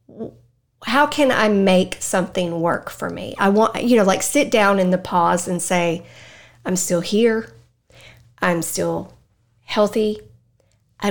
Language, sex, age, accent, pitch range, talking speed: English, female, 40-59, American, 170-200 Hz, 145 wpm